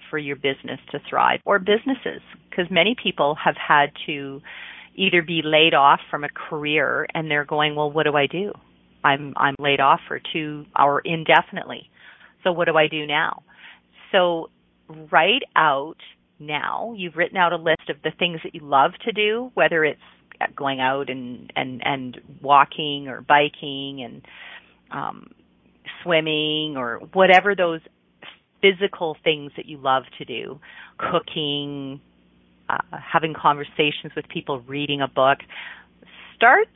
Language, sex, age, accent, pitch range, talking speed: English, female, 40-59, American, 140-175 Hz, 150 wpm